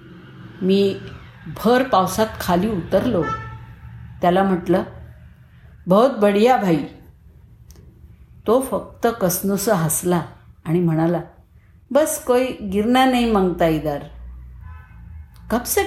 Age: 50-69